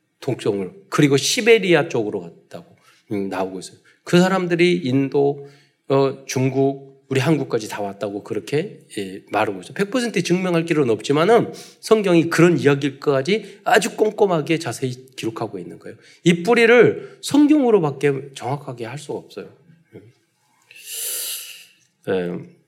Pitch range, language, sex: 125-190 Hz, Korean, male